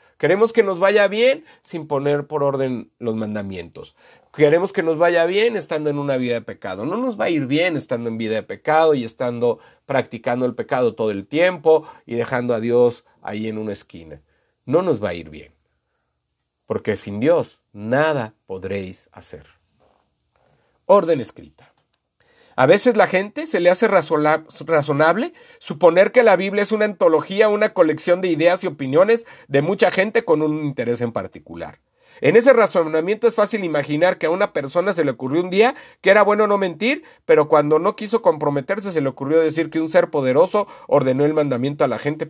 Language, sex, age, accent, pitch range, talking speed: Spanish, male, 40-59, Mexican, 125-205 Hz, 185 wpm